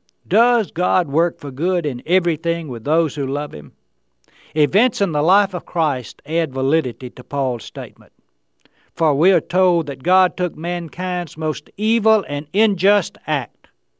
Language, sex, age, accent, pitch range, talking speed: English, male, 60-79, American, 130-185 Hz, 155 wpm